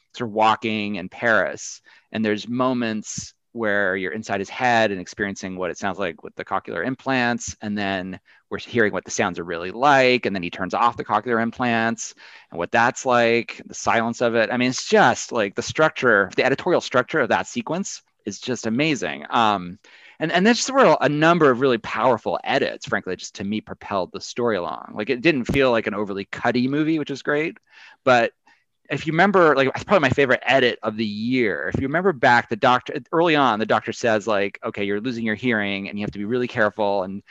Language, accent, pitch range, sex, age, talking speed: English, American, 105-135 Hz, male, 30-49, 215 wpm